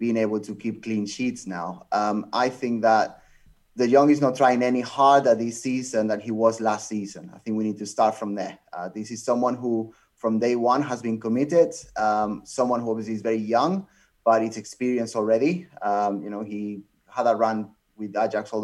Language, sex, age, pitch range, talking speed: English, male, 30-49, 110-135 Hz, 210 wpm